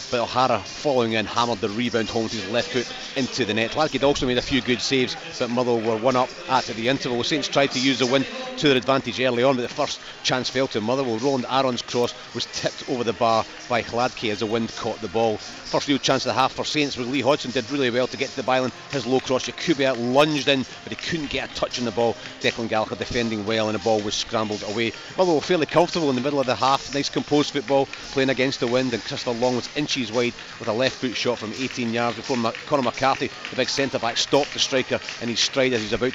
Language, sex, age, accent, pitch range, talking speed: English, male, 30-49, British, 115-135 Hz, 255 wpm